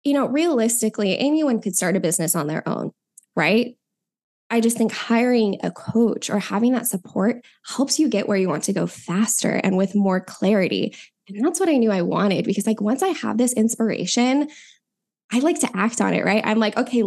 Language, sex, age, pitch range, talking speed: English, female, 10-29, 200-240 Hz, 205 wpm